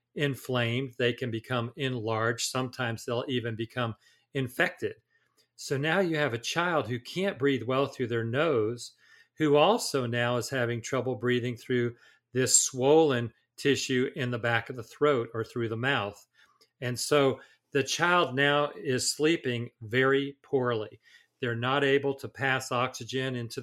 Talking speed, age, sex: 150 wpm, 40-59, male